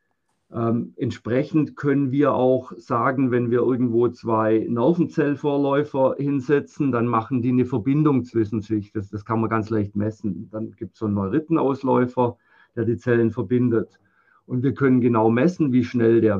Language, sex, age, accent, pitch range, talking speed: German, male, 50-69, German, 115-145 Hz, 160 wpm